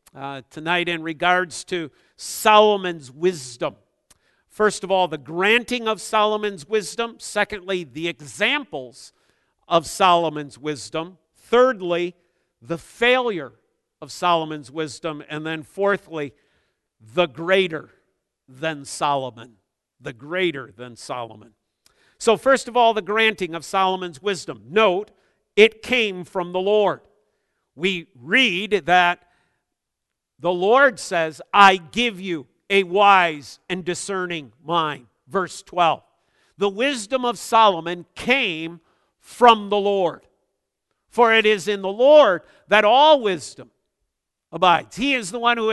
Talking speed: 120 wpm